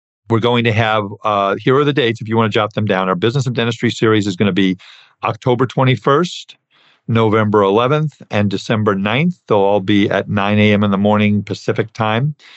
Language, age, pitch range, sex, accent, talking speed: English, 50-69, 100-115 Hz, male, American, 205 wpm